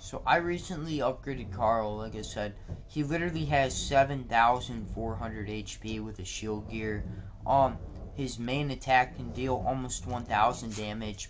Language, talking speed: English, 140 wpm